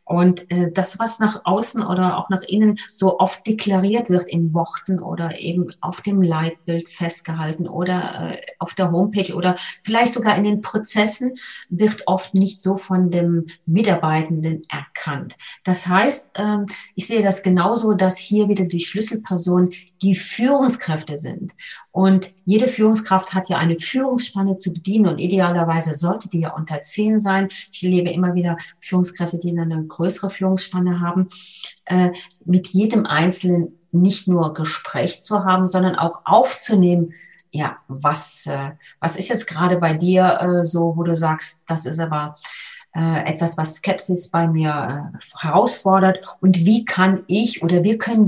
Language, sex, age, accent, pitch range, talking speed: German, female, 40-59, German, 170-195 Hz, 160 wpm